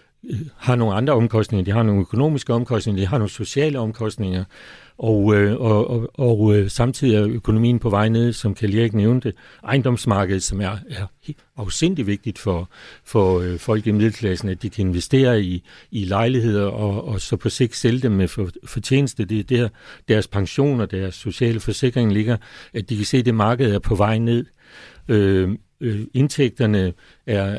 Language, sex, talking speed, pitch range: Danish, male, 175 wpm, 100-120 Hz